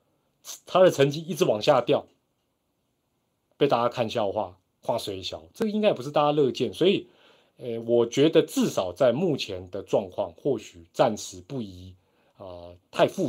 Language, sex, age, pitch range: Chinese, male, 30-49, 110-160 Hz